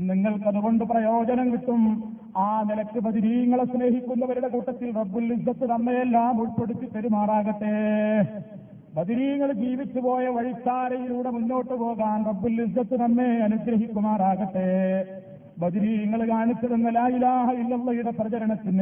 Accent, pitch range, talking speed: native, 210-240 Hz, 85 wpm